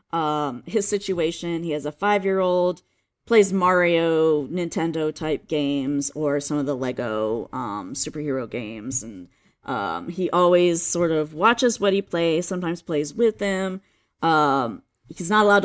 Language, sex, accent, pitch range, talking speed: English, female, American, 145-190 Hz, 140 wpm